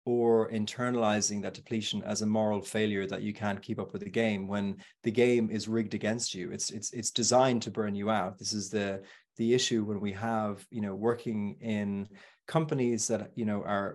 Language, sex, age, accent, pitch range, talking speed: English, male, 30-49, Irish, 105-120 Hz, 205 wpm